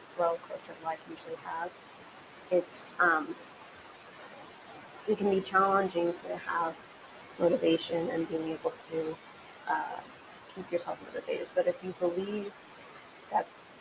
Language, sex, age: English, female, 30-49